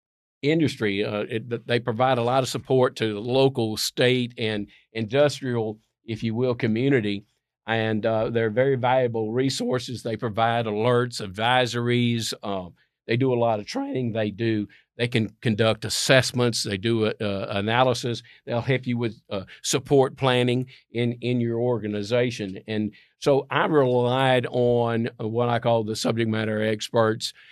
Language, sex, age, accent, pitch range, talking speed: English, male, 50-69, American, 110-130 Hz, 155 wpm